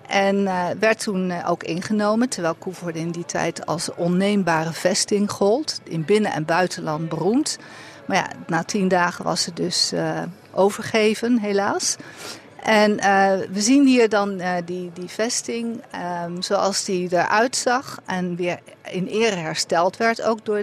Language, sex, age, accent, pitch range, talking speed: Dutch, female, 50-69, Dutch, 175-210 Hz, 155 wpm